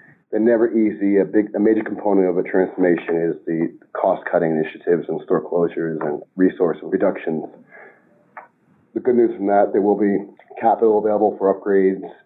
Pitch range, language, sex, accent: 85-105 Hz, English, male, American